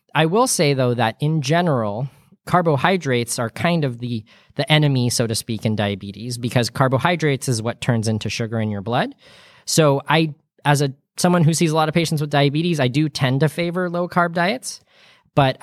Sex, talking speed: male, 195 wpm